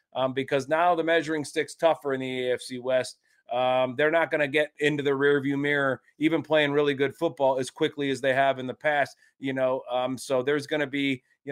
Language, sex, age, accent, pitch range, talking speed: English, male, 30-49, American, 125-145 Hz, 225 wpm